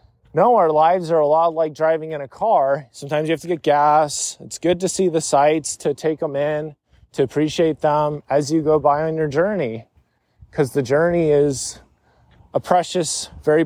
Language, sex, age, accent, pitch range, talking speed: English, male, 20-39, American, 130-180 Hz, 195 wpm